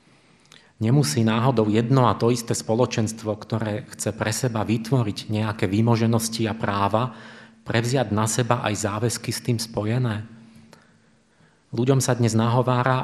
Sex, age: male, 30-49